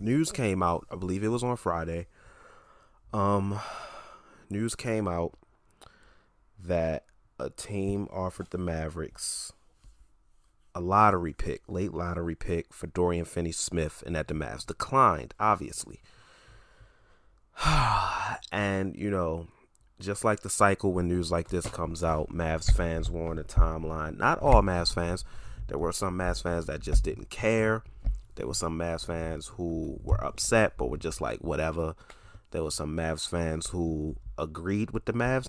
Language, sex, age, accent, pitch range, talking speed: English, male, 30-49, American, 85-105 Hz, 150 wpm